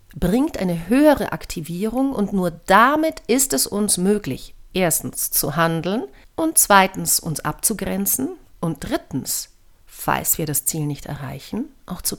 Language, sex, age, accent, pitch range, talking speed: German, female, 50-69, German, 160-215 Hz, 140 wpm